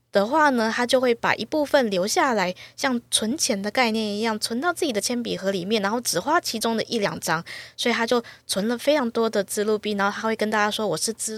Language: Chinese